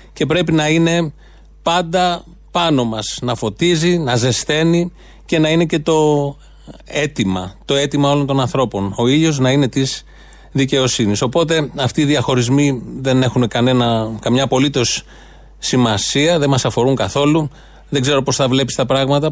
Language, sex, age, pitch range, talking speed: Greek, male, 30-49, 125-155 Hz, 150 wpm